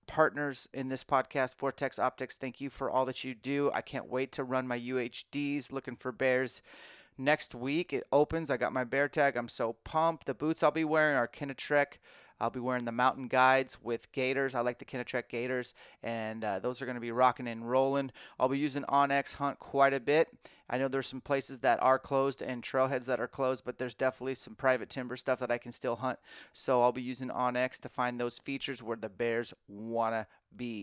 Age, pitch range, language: 30-49, 125-140 Hz, English